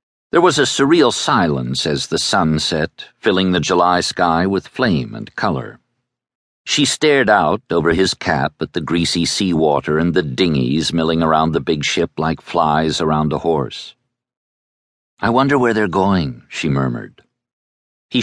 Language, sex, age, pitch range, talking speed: English, male, 60-79, 80-125 Hz, 160 wpm